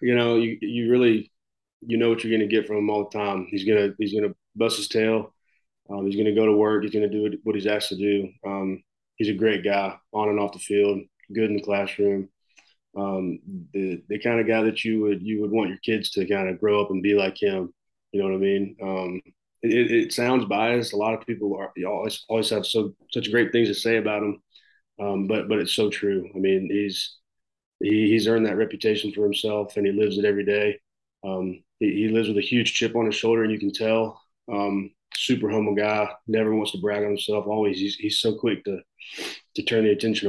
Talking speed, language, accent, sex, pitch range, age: 235 wpm, English, American, male, 100-110 Hz, 20-39